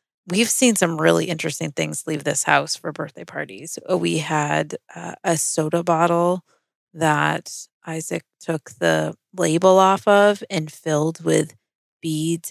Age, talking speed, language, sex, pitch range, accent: 30-49, 140 wpm, English, female, 145-170 Hz, American